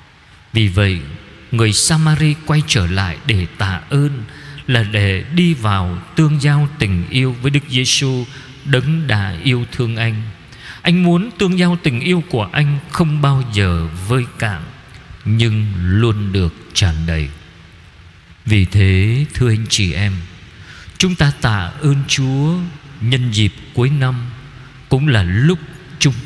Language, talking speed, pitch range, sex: Vietnamese, 145 wpm, 105-150 Hz, male